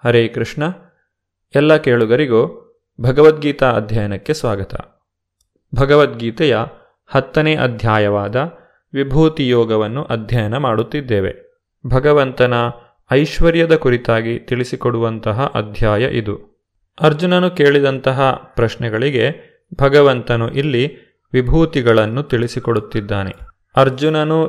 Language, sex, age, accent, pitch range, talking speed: Kannada, male, 30-49, native, 115-140 Hz, 65 wpm